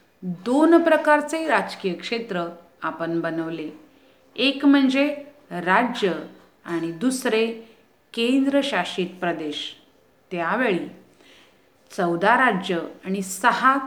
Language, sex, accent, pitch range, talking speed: Hindi, female, native, 170-260 Hz, 70 wpm